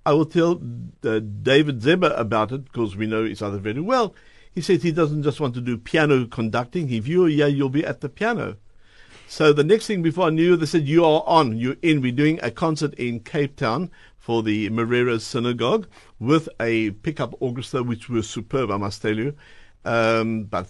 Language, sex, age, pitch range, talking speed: English, male, 60-79, 115-160 Hz, 205 wpm